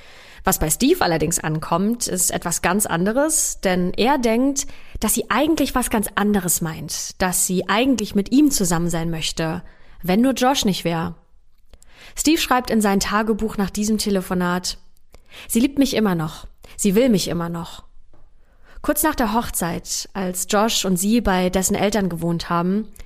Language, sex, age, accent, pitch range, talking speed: German, female, 20-39, German, 175-235 Hz, 165 wpm